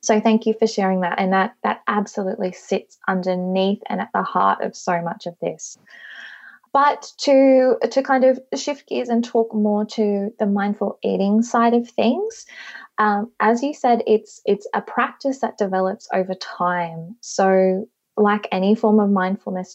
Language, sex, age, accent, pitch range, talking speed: English, female, 20-39, Australian, 190-235 Hz, 170 wpm